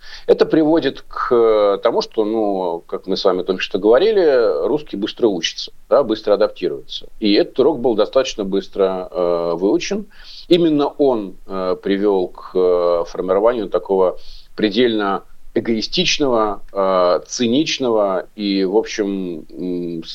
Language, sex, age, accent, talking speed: Russian, male, 40-59, native, 120 wpm